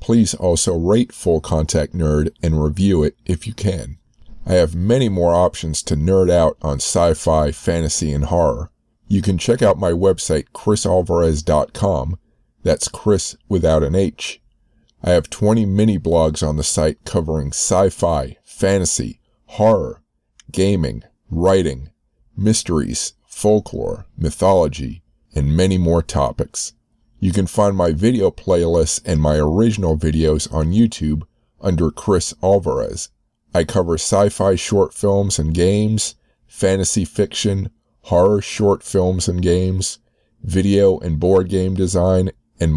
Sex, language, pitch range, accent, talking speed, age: male, English, 80-100 Hz, American, 130 wpm, 50-69